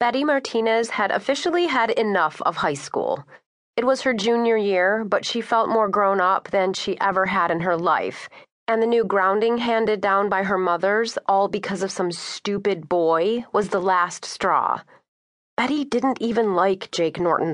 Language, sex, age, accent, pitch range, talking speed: English, female, 30-49, American, 185-230 Hz, 180 wpm